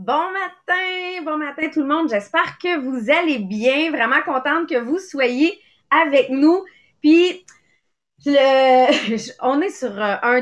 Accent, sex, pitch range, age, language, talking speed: Canadian, female, 245-320 Hz, 30-49, English, 140 wpm